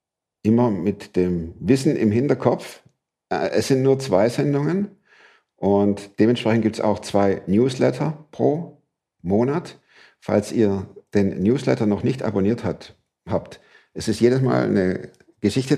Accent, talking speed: German, 130 wpm